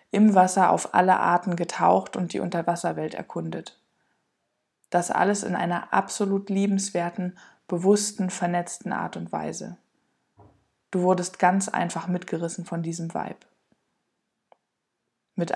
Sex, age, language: female, 20-39, German